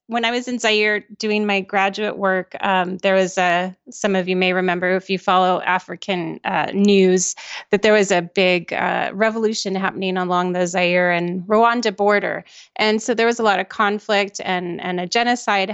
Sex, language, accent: female, English, American